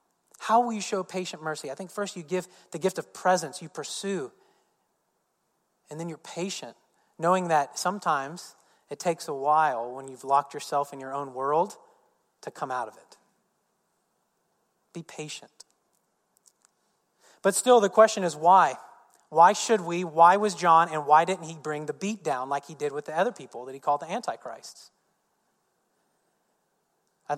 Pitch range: 145-180 Hz